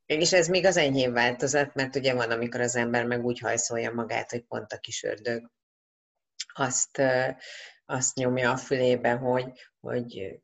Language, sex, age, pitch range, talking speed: Hungarian, female, 30-49, 120-135 Hz, 160 wpm